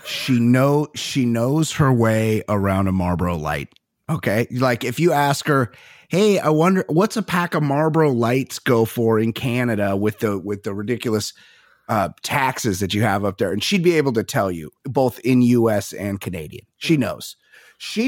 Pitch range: 115-180 Hz